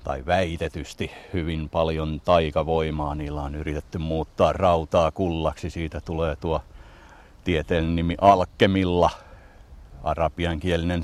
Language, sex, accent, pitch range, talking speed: Finnish, male, native, 80-90 Hz, 100 wpm